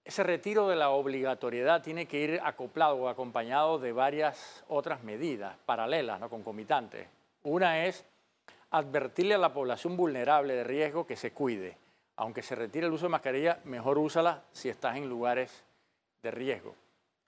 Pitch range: 125-165 Hz